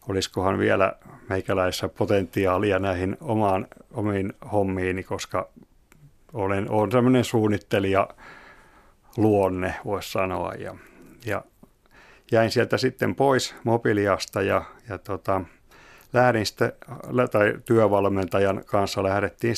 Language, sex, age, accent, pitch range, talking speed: Finnish, male, 50-69, native, 95-115 Hz, 100 wpm